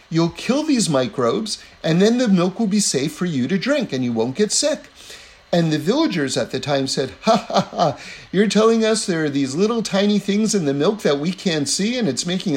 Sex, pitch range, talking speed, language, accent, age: male, 145-210 Hz, 235 wpm, English, American, 50-69